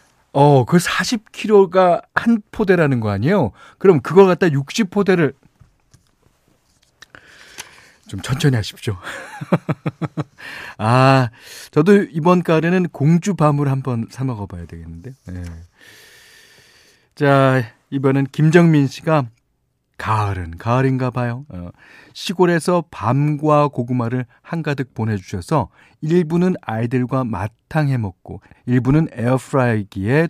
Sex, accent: male, native